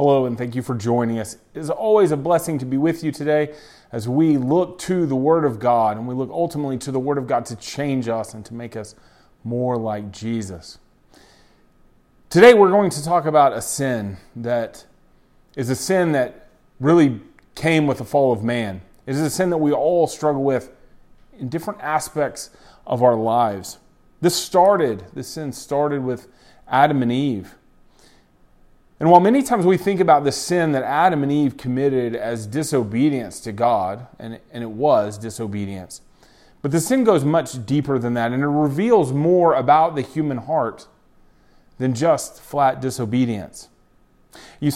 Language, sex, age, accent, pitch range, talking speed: English, male, 30-49, American, 120-150 Hz, 175 wpm